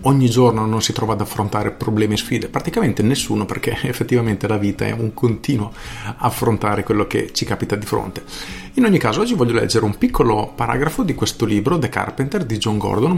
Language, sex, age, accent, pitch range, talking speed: Italian, male, 40-59, native, 105-130 Hz, 195 wpm